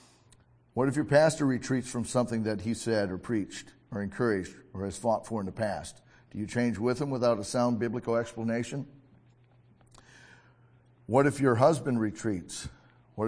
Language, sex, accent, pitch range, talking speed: English, male, American, 105-125 Hz, 165 wpm